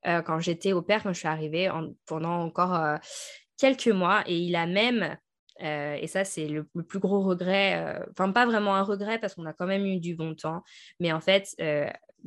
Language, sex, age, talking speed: French, female, 20-39, 230 wpm